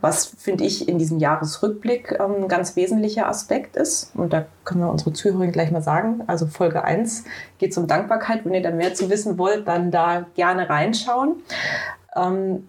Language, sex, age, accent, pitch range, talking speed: German, female, 30-49, German, 165-200 Hz, 190 wpm